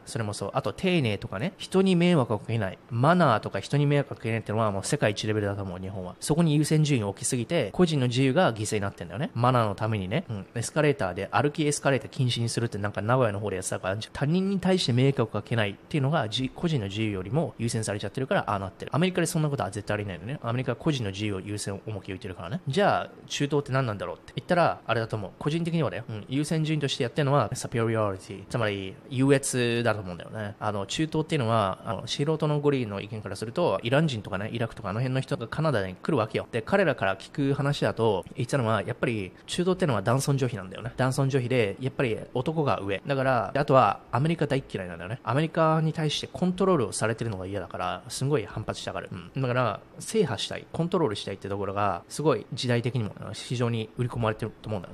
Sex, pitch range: male, 105-145 Hz